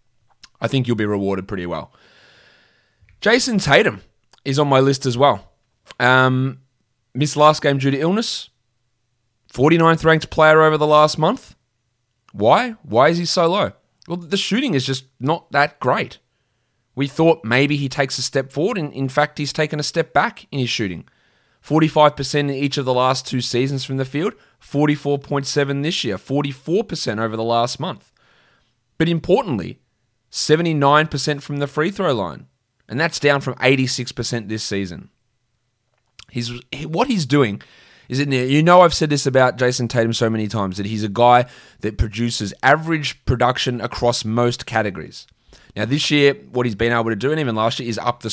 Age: 20-39